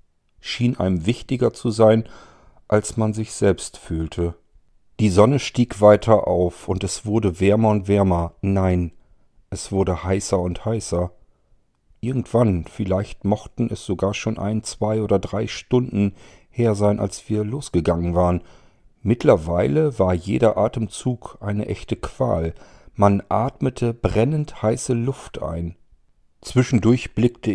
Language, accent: German, German